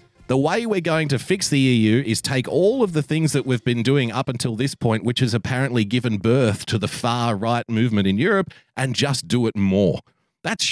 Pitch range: 110-150 Hz